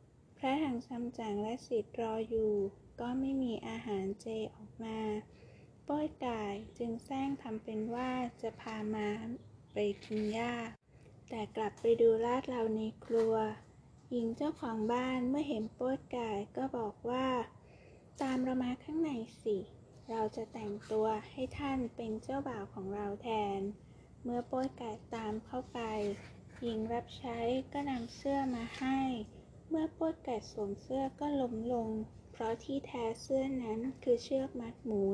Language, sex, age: Thai, female, 20-39